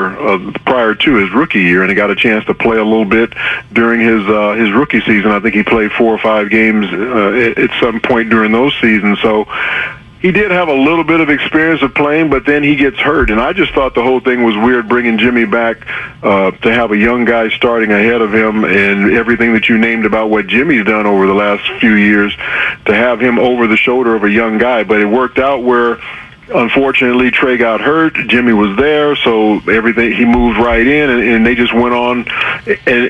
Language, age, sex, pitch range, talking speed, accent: English, 40-59, male, 110-125 Hz, 225 wpm, American